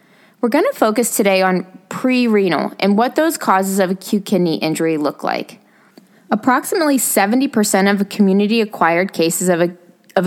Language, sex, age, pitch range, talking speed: English, female, 20-39, 180-225 Hz, 145 wpm